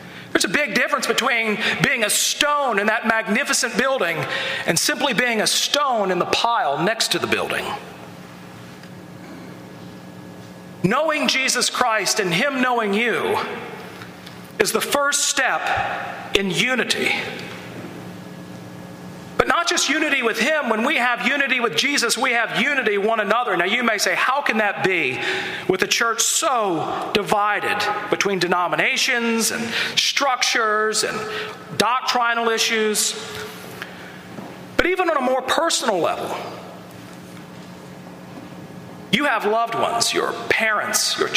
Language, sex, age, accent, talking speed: English, male, 40-59, American, 125 wpm